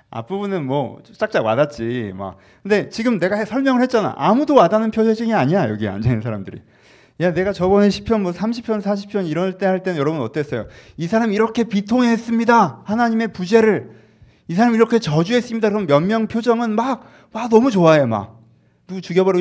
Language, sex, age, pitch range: Korean, male, 30-49, 150-245 Hz